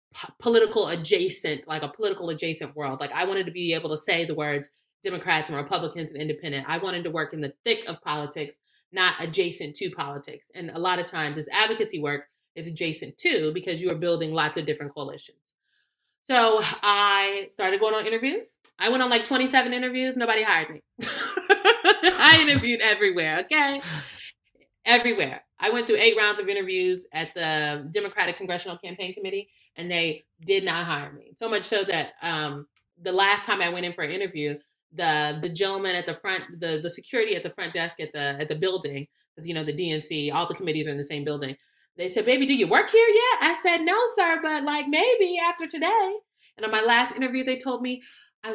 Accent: American